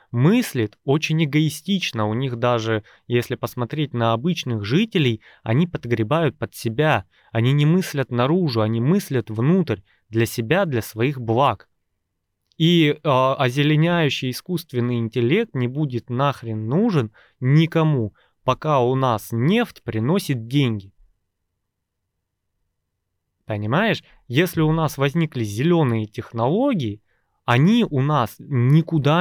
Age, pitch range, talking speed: 20-39, 110-150 Hz, 110 wpm